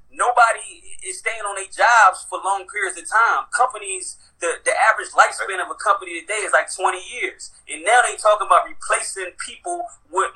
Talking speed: 185 wpm